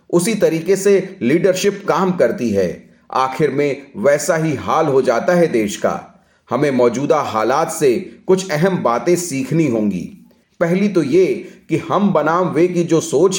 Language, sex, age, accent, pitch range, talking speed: Hindi, male, 30-49, native, 140-185 Hz, 160 wpm